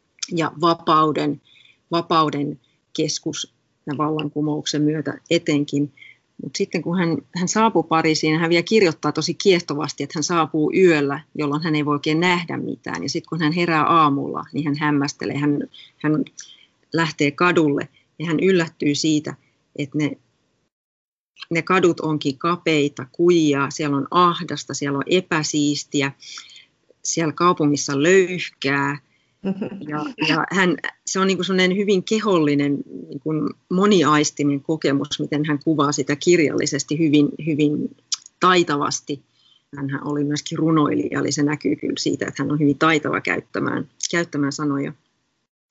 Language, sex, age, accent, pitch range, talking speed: Finnish, female, 30-49, native, 145-170 Hz, 130 wpm